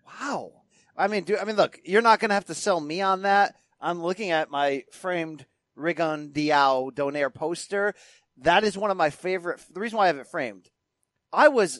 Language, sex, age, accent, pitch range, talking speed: English, male, 30-49, American, 155-200 Hz, 205 wpm